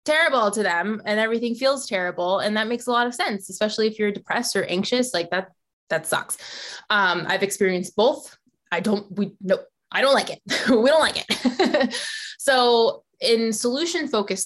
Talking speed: 180 wpm